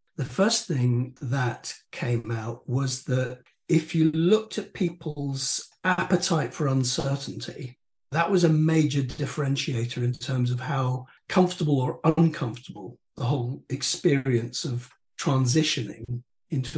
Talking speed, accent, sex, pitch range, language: 120 wpm, British, male, 125-165 Hz, English